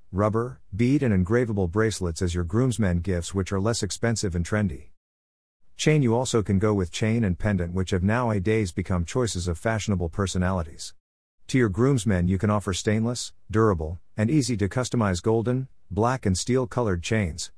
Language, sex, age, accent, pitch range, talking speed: English, male, 50-69, American, 90-115 Hz, 160 wpm